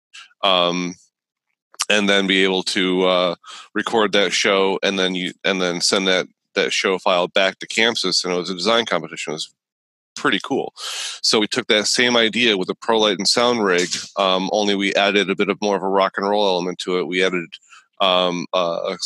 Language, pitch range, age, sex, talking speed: English, 95-110 Hz, 30-49, male, 210 wpm